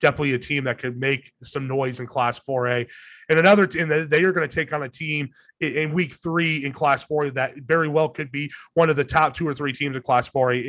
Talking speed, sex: 245 wpm, male